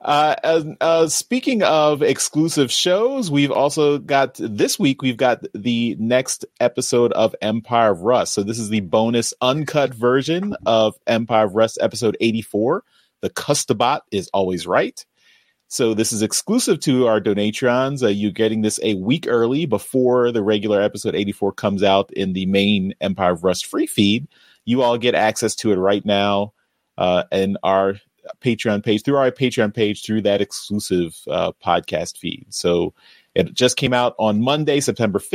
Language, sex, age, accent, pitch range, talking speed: English, male, 30-49, American, 100-135 Hz, 170 wpm